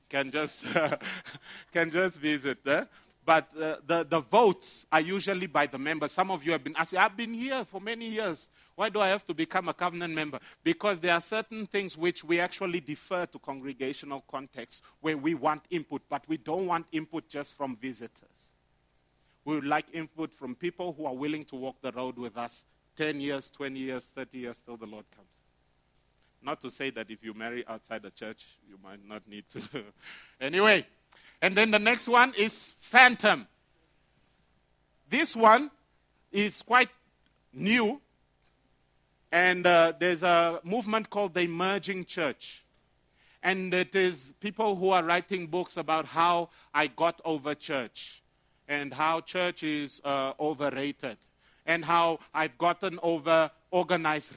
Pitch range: 135-180 Hz